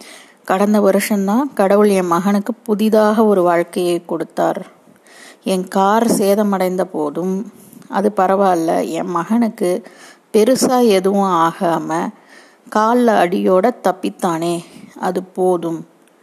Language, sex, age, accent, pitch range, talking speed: Tamil, female, 30-49, native, 185-220 Hz, 90 wpm